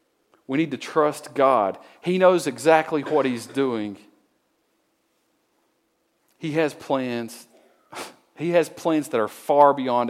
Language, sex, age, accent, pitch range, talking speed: English, male, 40-59, American, 115-155 Hz, 125 wpm